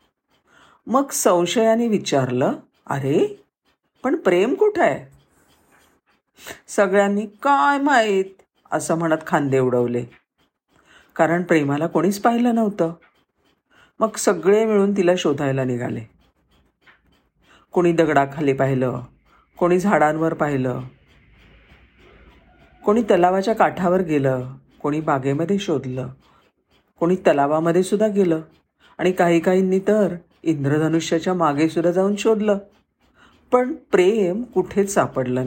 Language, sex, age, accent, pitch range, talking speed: Marathi, female, 50-69, native, 140-190 Hz, 95 wpm